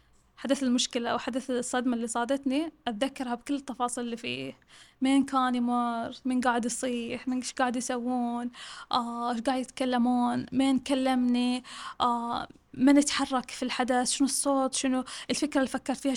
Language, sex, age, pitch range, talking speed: Arabic, female, 10-29, 245-280 Hz, 150 wpm